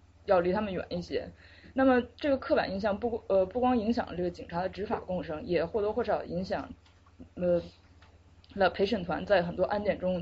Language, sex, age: Chinese, female, 20-39